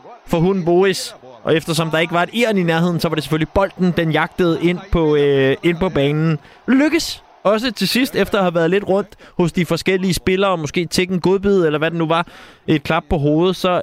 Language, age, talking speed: Danish, 20-39, 225 wpm